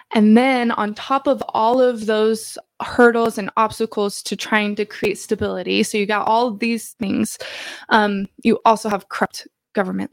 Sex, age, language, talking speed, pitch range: female, 20-39, English, 170 wpm, 200-225 Hz